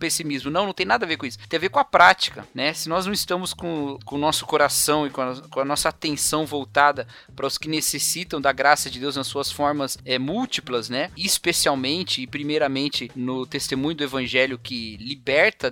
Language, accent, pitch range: Portuguese, Brazilian, 135-175 Hz